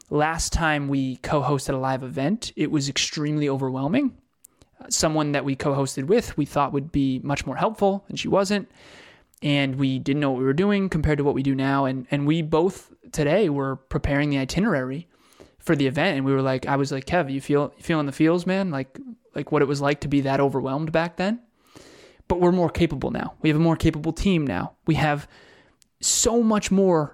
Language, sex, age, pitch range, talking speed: English, male, 20-39, 140-170 Hz, 215 wpm